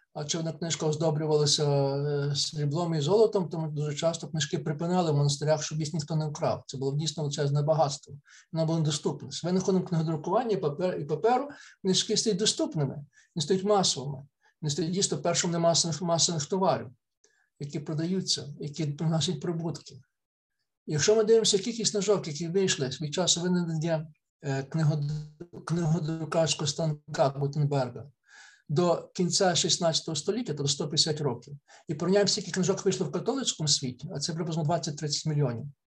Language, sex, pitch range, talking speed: Ukrainian, male, 145-185 Hz, 150 wpm